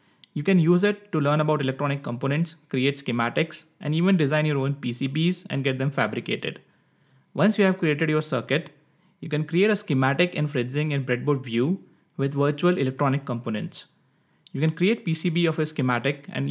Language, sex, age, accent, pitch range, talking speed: English, male, 30-49, Indian, 130-165 Hz, 180 wpm